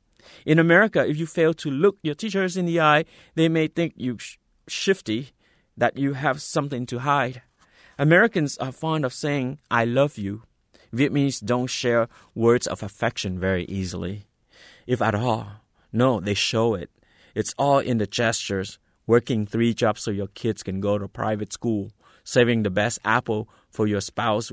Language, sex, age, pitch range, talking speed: English, male, 30-49, 105-140 Hz, 170 wpm